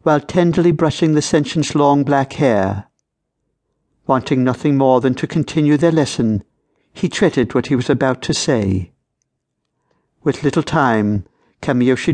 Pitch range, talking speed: 125-165 Hz, 140 wpm